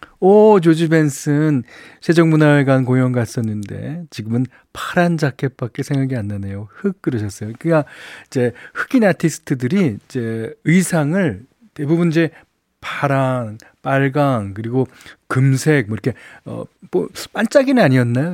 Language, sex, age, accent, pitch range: Korean, male, 40-59, native, 110-170 Hz